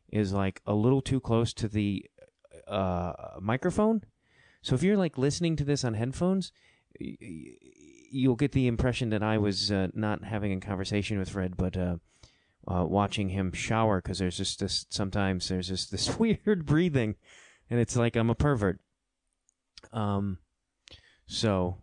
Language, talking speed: English, 160 wpm